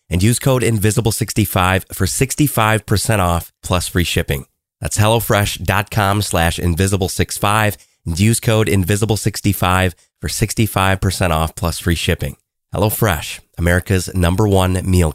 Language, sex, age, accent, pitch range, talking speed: English, male, 30-49, American, 90-110 Hz, 115 wpm